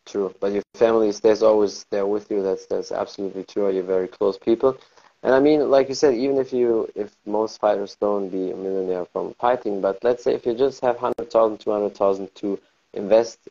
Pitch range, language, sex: 95-120 Hz, German, male